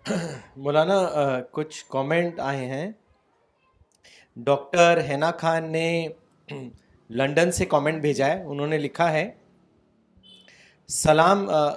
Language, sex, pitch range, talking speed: Urdu, male, 150-190 Hz, 90 wpm